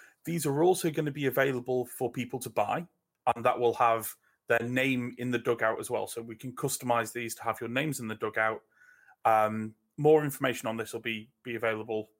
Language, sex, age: English, male, 30-49